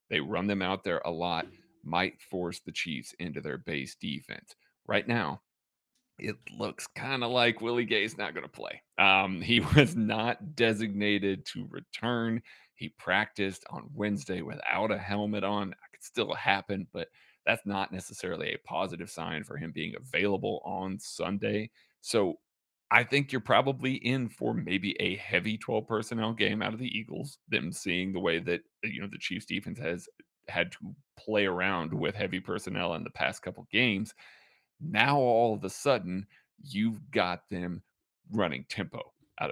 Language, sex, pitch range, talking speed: English, male, 95-115 Hz, 165 wpm